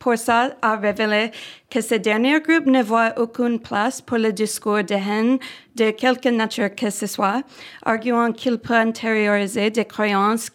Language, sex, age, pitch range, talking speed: French, female, 30-49, 210-245 Hz, 165 wpm